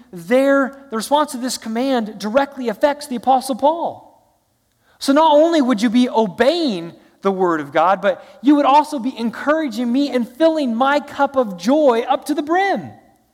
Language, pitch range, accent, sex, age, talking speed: English, 215-290 Hz, American, male, 30-49, 175 wpm